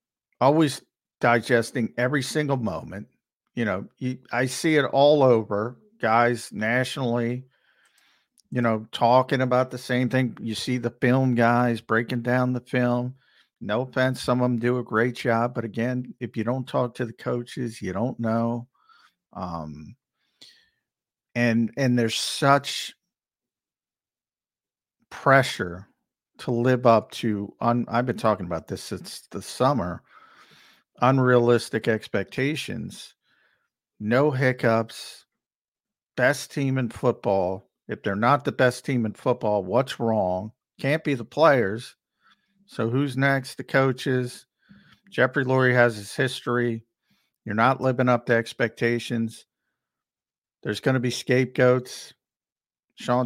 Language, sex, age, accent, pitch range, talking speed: English, male, 50-69, American, 115-130 Hz, 130 wpm